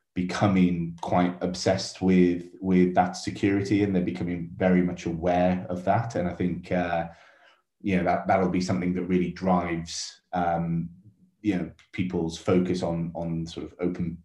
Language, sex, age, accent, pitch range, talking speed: English, male, 30-49, British, 90-105 Hz, 160 wpm